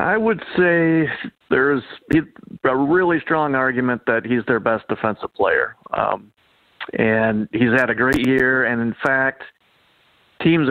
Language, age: English, 40-59